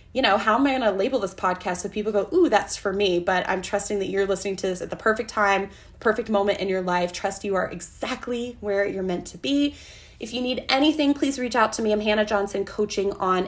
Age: 20-39